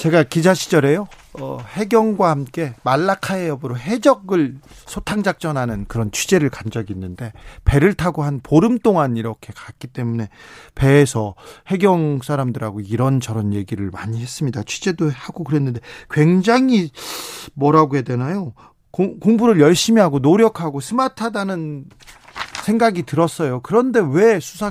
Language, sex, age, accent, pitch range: Korean, male, 40-59, native, 135-195 Hz